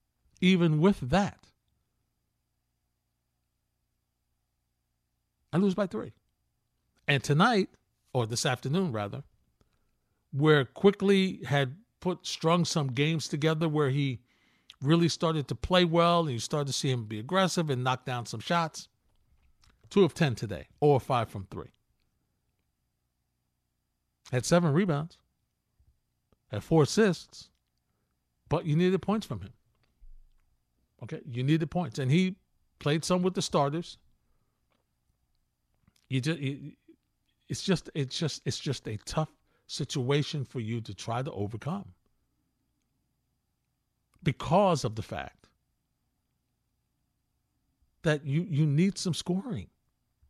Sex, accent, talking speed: male, American, 115 wpm